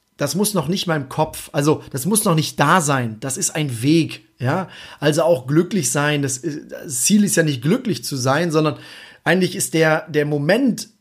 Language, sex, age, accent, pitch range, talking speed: German, male, 30-49, German, 140-180 Hz, 205 wpm